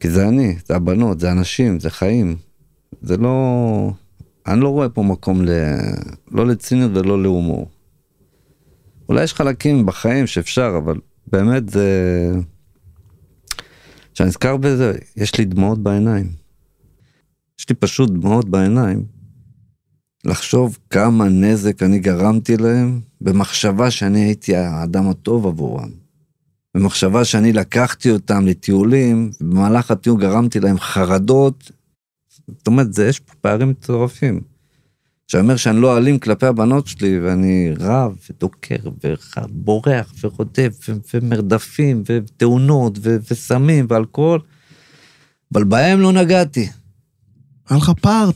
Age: 50-69